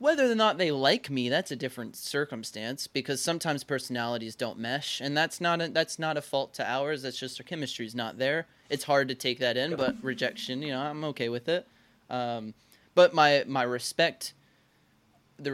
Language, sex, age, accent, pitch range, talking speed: English, male, 20-39, American, 120-145 Hz, 195 wpm